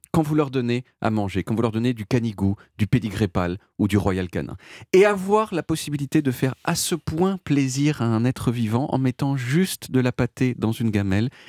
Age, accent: 40-59, French